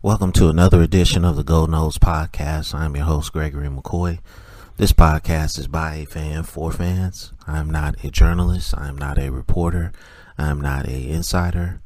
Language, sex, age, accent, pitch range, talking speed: English, male, 30-49, American, 75-90 Hz, 170 wpm